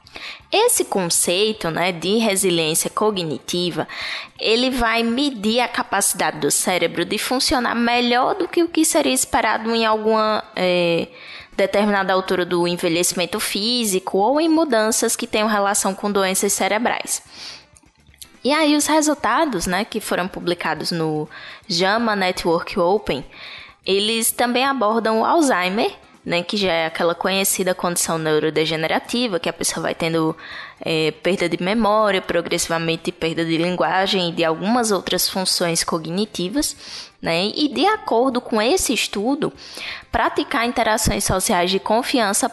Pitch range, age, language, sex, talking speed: 180-255 Hz, 10-29, Portuguese, female, 130 wpm